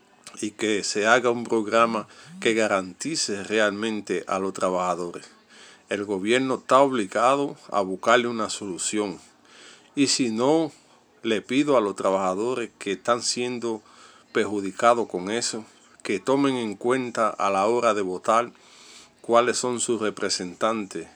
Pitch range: 95-120 Hz